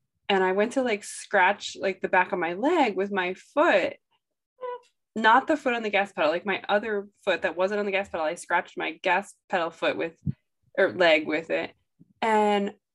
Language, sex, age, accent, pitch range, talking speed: English, female, 20-39, American, 185-240 Hz, 205 wpm